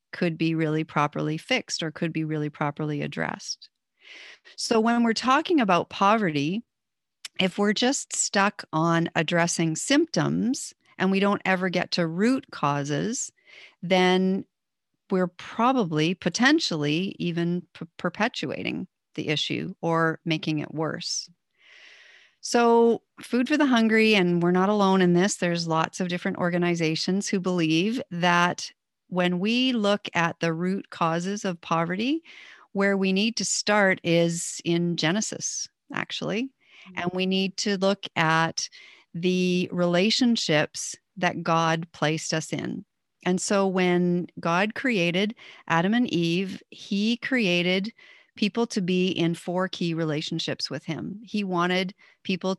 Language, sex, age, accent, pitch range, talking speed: English, female, 40-59, American, 165-215 Hz, 130 wpm